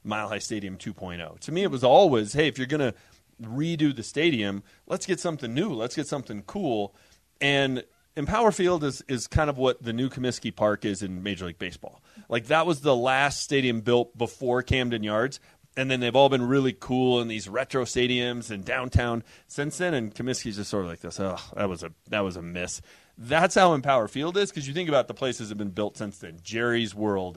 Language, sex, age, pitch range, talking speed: English, male, 30-49, 105-135 Hz, 220 wpm